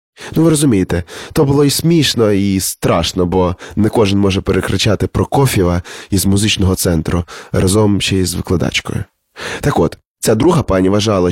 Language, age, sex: Ukrainian, 20-39, male